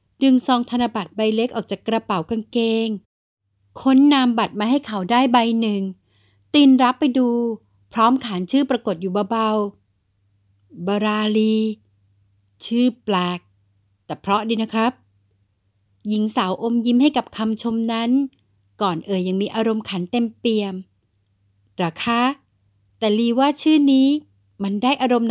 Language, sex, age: Thai, female, 60-79